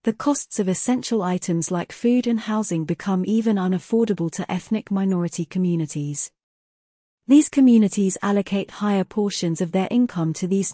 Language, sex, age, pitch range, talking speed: English, female, 40-59, 175-225 Hz, 145 wpm